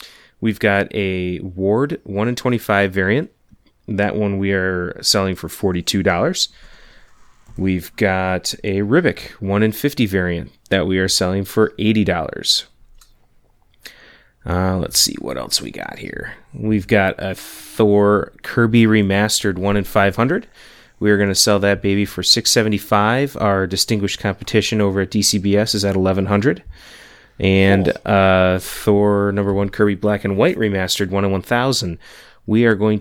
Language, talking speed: English, 145 wpm